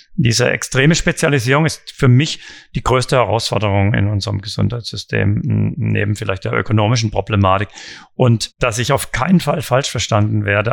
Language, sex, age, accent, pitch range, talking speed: German, male, 40-59, German, 105-125 Hz, 145 wpm